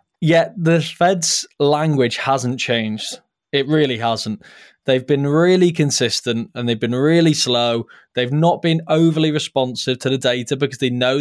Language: English